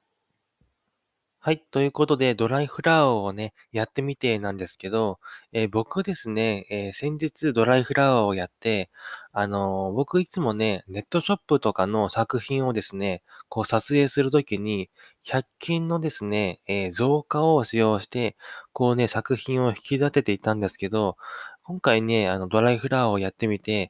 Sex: male